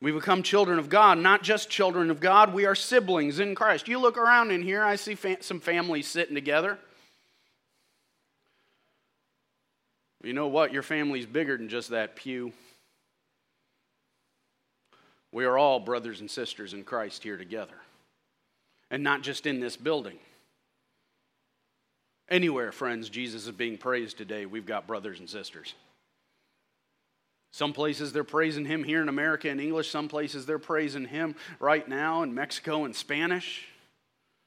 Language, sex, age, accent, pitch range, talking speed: English, male, 40-59, American, 140-190 Hz, 150 wpm